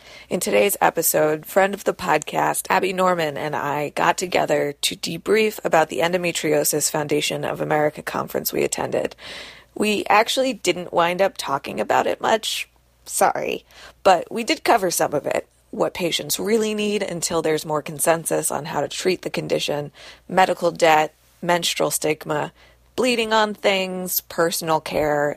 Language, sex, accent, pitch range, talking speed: English, female, American, 155-190 Hz, 150 wpm